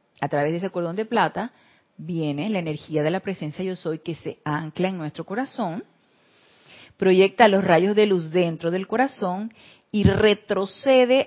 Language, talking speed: Spanish, 165 wpm